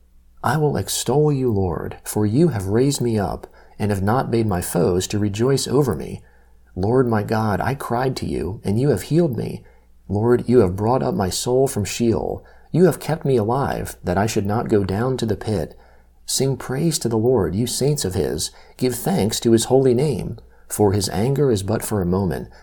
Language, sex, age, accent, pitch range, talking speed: English, male, 40-59, American, 90-125 Hz, 210 wpm